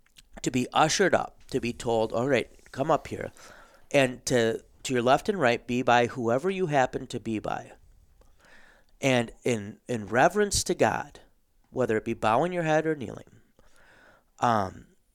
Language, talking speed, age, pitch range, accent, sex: English, 165 wpm, 40-59, 115-155 Hz, American, male